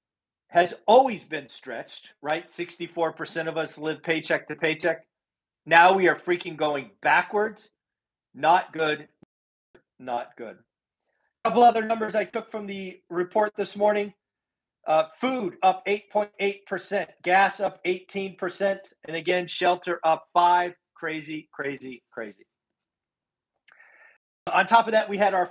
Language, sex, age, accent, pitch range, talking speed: English, male, 40-59, American, 155-200 Hz, 130 wpm